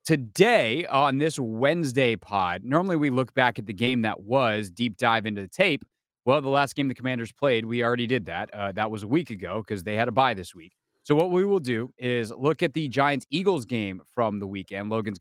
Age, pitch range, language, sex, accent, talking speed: 30-49, 105-130 Hz, English, male, American, 230 wpm